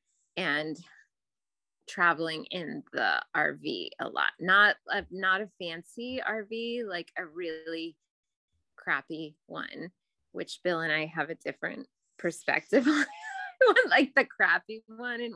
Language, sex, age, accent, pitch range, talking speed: English, female, 20-39, American, 170-235 Hz, 125 wpm